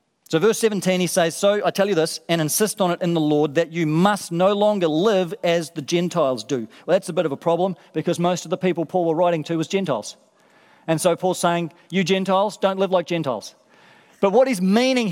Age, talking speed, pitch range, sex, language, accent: 40-59, 235 wpm, 170-215 Hz, male, English, Australian